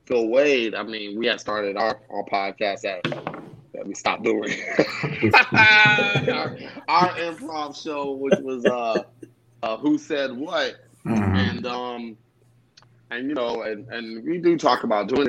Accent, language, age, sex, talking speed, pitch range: American, English, 30-49, male, 150 wpm, 110-135 Hz